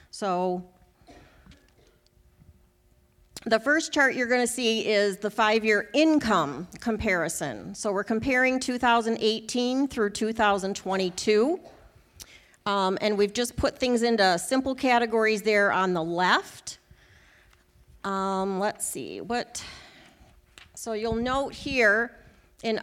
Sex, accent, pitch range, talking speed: female, American, 195-250 Hz, 110 wpm